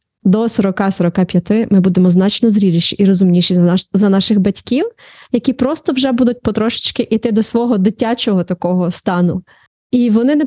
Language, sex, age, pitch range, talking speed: Ukrainian, female, 20-39, 190-225 Hz, 145 wpm